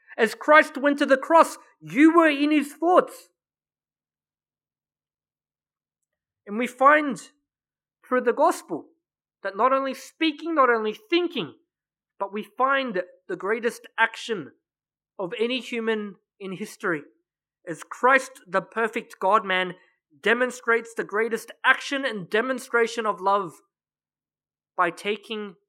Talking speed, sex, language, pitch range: 115 wpm, male, English, 195-255 Hz